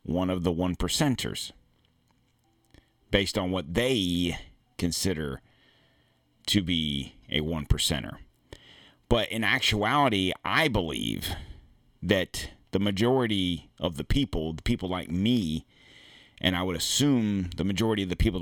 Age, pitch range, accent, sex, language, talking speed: 40-59, 90-125 Hz, American, male, English, 125 wpm